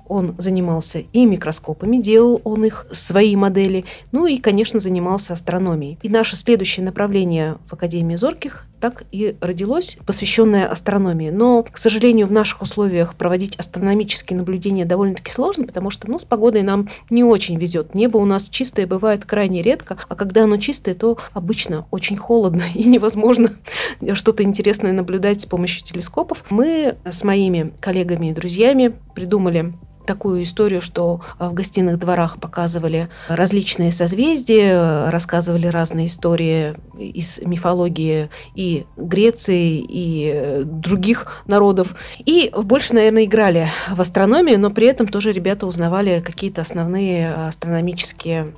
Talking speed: 135 wpm